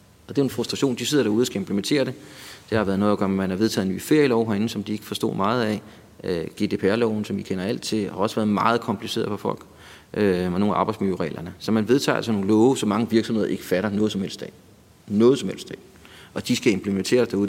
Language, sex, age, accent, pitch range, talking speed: Danish, male, 30-49, native, 100-120 Hz, 255 wpm